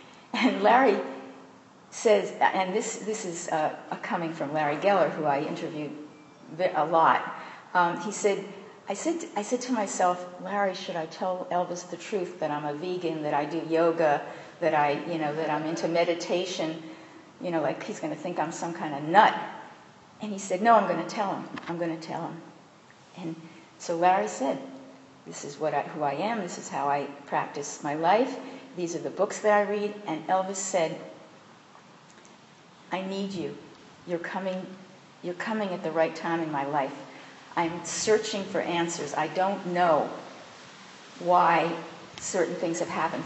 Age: 50-69